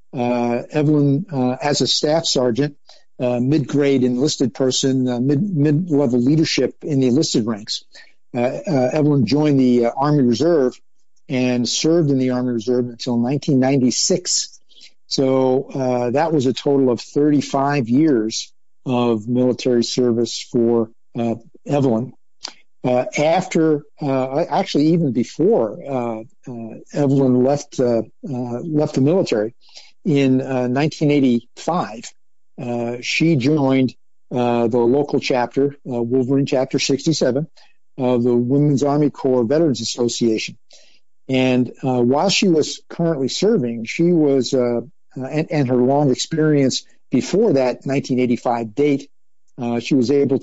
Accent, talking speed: American, 130 wpm